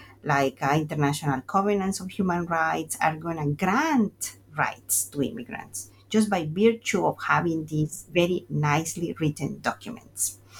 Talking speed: 135 wpm